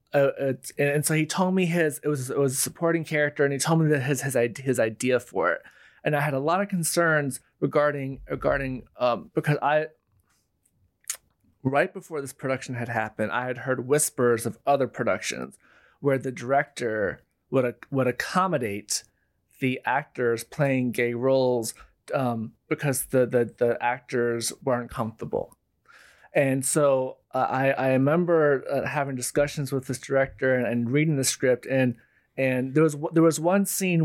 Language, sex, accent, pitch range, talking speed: English, male, American, 125-150 Hz, 170 wpm